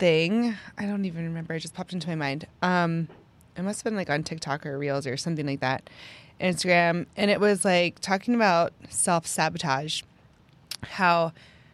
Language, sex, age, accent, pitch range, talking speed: English, female, 20-39, American, 160-200 Hz, 170 wpm